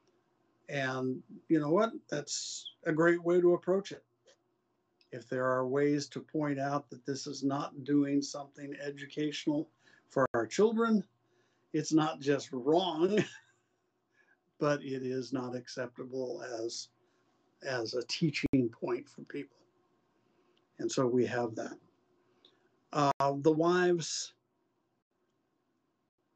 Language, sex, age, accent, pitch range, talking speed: English, male, 50-69, American, 135-175 Hz, 120 wpm